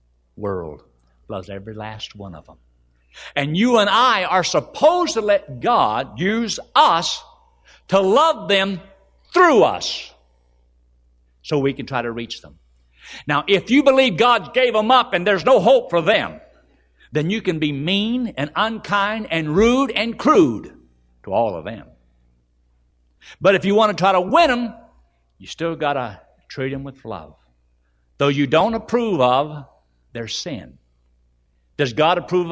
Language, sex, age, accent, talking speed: English, male, 60-79, American, 160 wpm